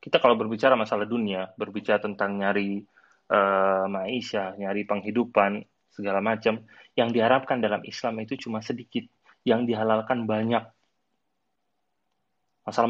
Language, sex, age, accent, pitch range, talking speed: Indonesian, male, 30-49, native, 115-185 Hz, 115 wpm